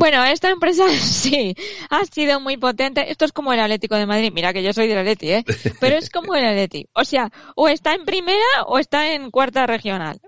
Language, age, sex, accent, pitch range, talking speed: Spanish, 20-39, female, Spanish, 210-285 Hz, 215 wpm